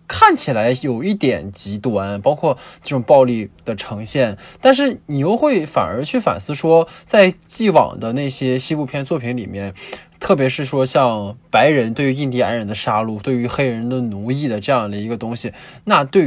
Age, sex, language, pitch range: 20-39, male, Chinese, 115-175 Hz